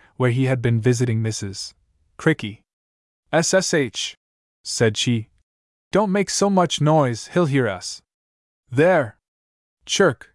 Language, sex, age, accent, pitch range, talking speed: English, male, 20-39, American, 95-145 Hz, 115 wpm